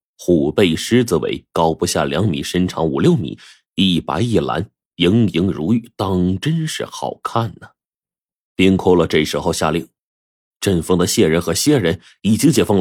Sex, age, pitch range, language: male, 30-49, 85-125 Hz, Chinese